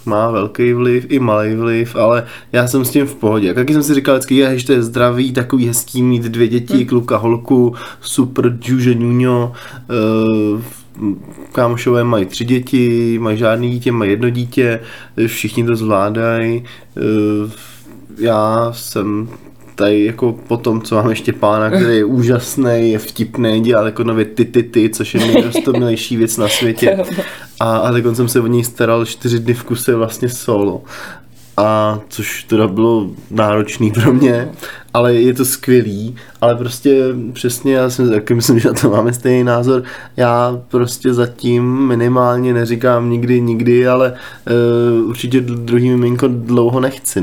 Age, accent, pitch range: 20-39, native, 115-125 Hz